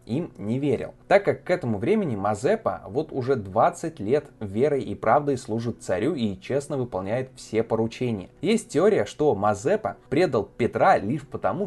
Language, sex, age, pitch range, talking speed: Russian, male, 20-39, 105-145 Hz, 160 wpm